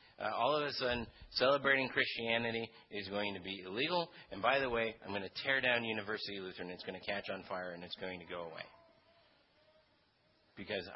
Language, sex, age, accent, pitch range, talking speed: English, male, 40-59, American, 95-120 Hz, 195 wpm